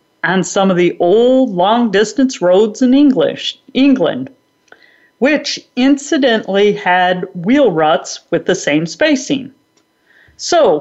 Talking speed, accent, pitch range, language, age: 110 wpm, American, 180-250 Hz, English, 50-69